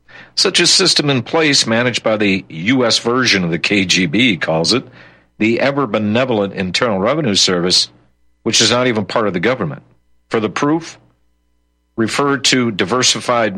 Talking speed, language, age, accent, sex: 160 wpm, English, 50-69, American, male